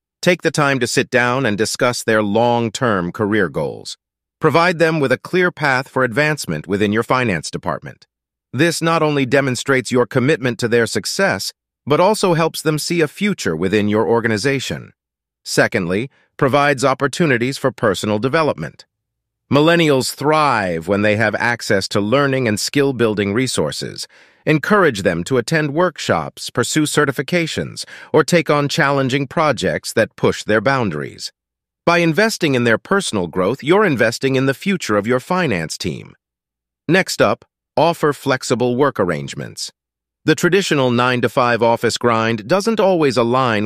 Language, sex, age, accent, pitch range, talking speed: English, male, 40-59, American, 110-150 Hz, 145 wpm